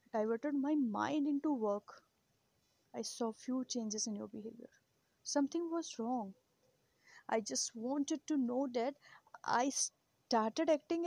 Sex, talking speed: female, 130 wpm